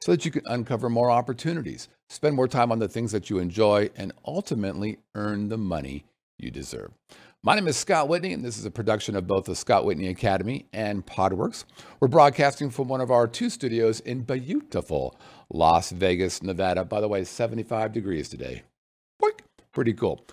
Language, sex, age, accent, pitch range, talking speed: English, male, 50-69, American, 95-135 Hz, 185 wpm